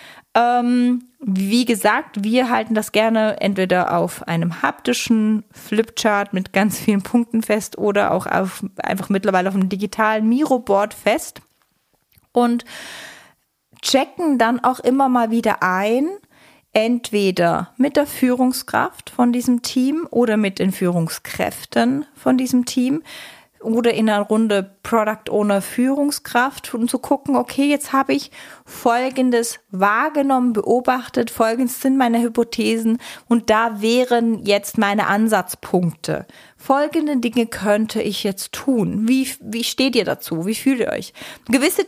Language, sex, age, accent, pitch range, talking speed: German, female, 30-49, German, 210-255 Hz, 125 wpm